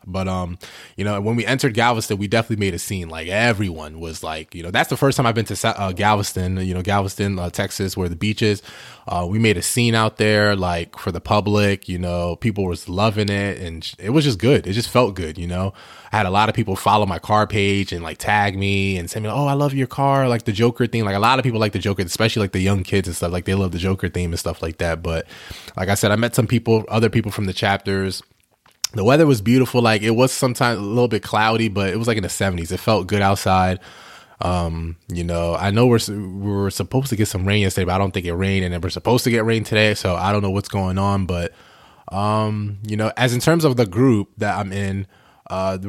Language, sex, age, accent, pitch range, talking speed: English, male, 20-39, American, 95-110 Hz, 260 wpm